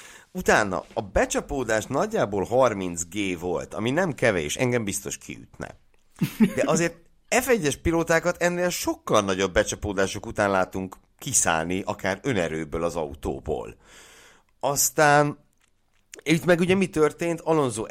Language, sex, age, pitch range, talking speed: Hungarian, male, 60-79, 95-150 Hz, 115 wpm